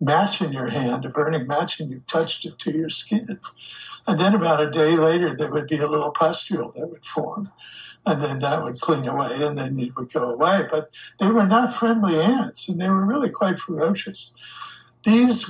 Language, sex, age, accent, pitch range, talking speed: English, male, 60-79, American, 150-180 Hz, 210 wpm